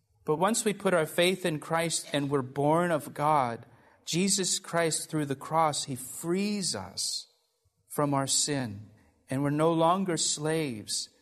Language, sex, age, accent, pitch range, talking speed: English, male, 40-59, American, 130-175 Hz, 155 wpm